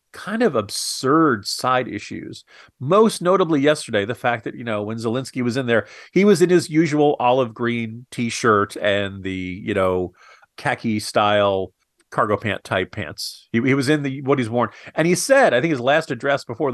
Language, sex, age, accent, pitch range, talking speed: English, male, 40-59, American, 110-155 Hz, 190 wpm